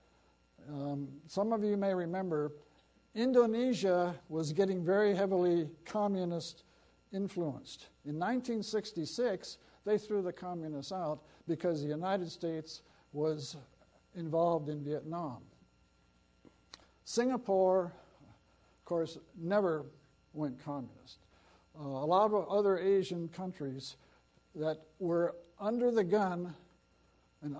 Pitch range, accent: 150-190 Hz, American